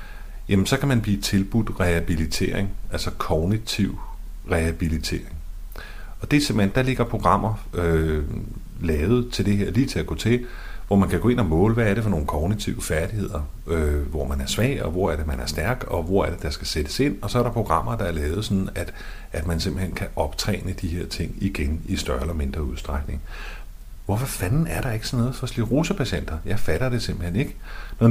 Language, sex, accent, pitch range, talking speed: Danish, male, native, 80-110 Hz, 210 wpm